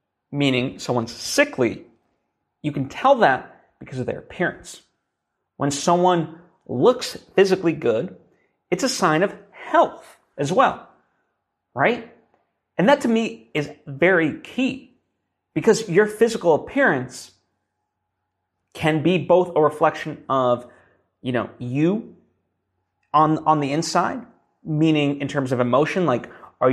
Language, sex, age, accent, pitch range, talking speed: English, male, 30-49, American, 125-160 Hz, 125 wpm